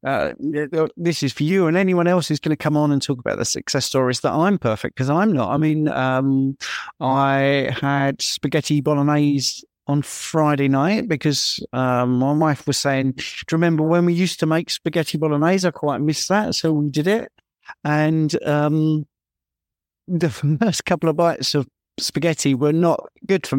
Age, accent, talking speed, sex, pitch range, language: 50-69, British, 180 wpm, male, 130-160 Hz, English